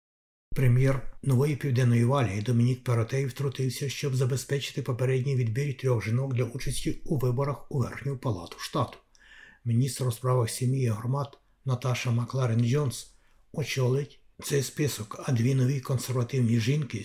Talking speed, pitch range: 125 wpm, 120-140 Hz